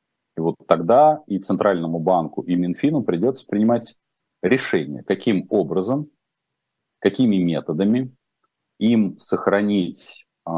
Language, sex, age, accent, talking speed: Russian, male, 40-59, native, 95 wpm